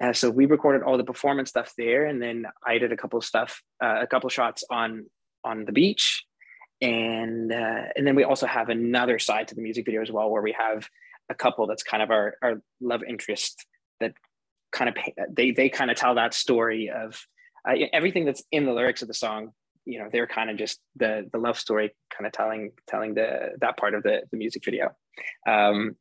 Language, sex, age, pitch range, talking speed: English, male, 20-39, 110-130 Hz, 225 wpm